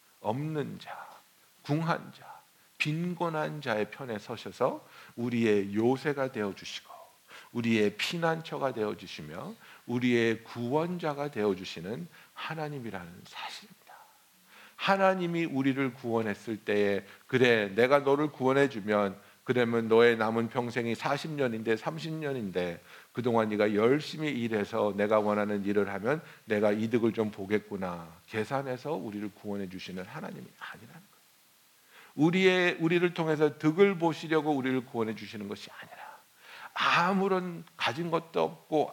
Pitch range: 105-160 Hz